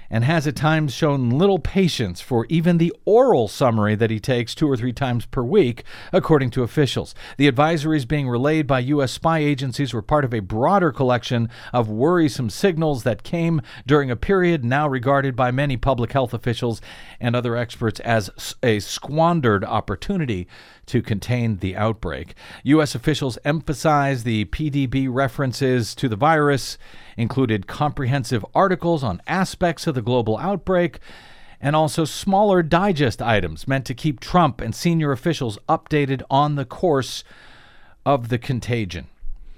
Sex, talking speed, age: male, 155 wpm, 50-69